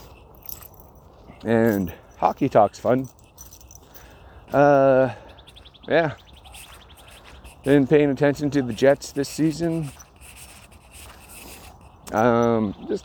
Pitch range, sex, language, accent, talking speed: 95-130 Hz, male, English, American, 75 wpm